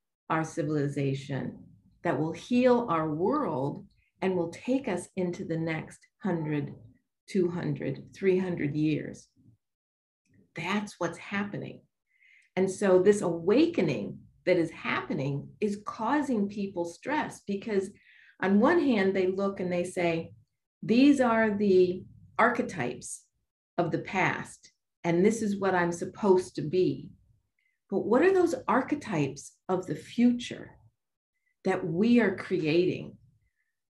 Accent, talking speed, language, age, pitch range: American, 120 wpm, English, 50-69, 170-240 Hz